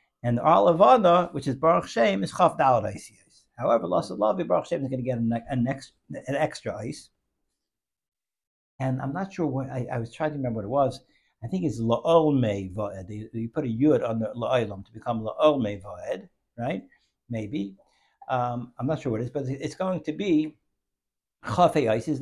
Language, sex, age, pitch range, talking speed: English, male, 60-79, 120-155 Hz, 190 wpm